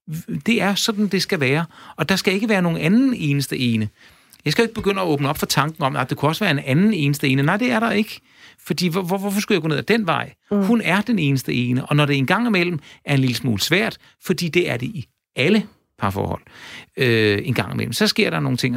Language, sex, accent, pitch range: Danish, male, native, 130-200 Hz